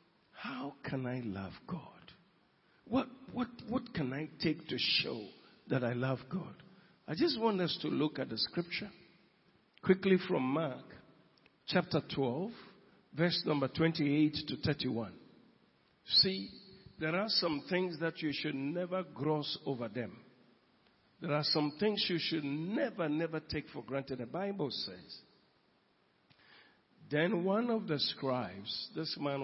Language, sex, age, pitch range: English, male, 50-69, 135-185 Hz